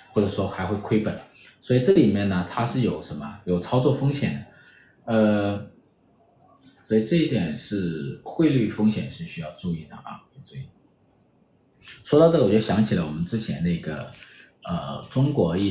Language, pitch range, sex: Chinese, 95-130 Hz, male